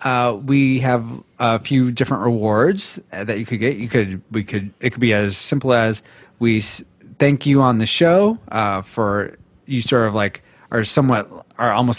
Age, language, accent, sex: 30-49, English, American, male